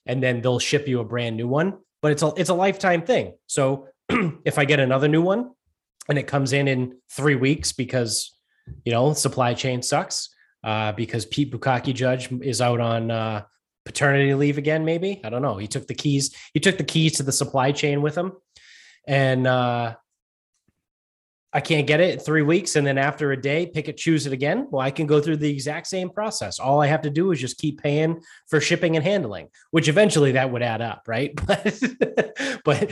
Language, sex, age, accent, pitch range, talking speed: English, male, 20-39, American, 120-150 Hz, 210 wpm